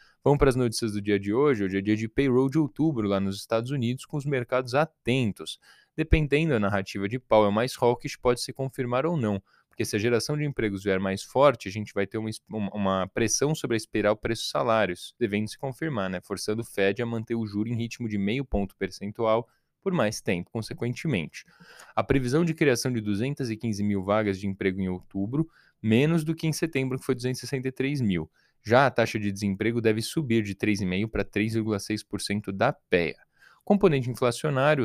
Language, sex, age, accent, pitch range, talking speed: Portuguese, male, 10-29, Brazilian, 105-130 Hz, 195 wpm